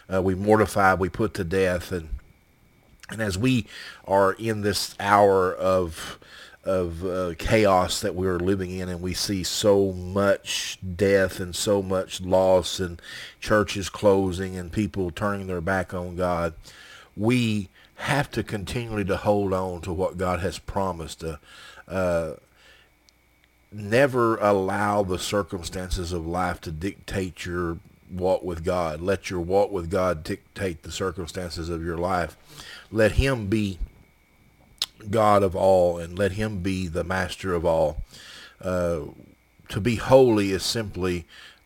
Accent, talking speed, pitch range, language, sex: American, 150 wpm, 90-100 Hz, English, male